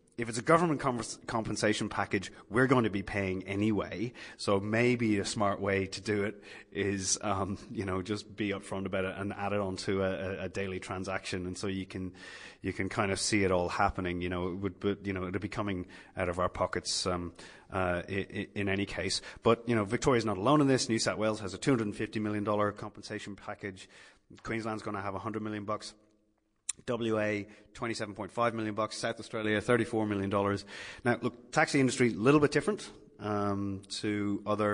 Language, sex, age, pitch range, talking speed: English, male, 30-49, 95-110 Hz, 200 wpm